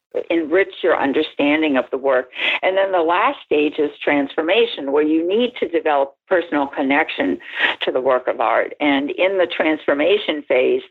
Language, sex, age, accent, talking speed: English, female, 60-79, American, 165 wpm